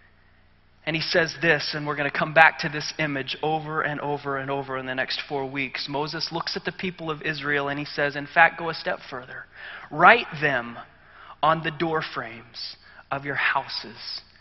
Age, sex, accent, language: 30-49, male, American, English